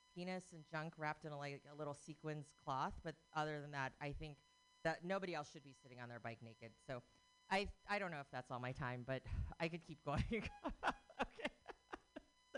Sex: female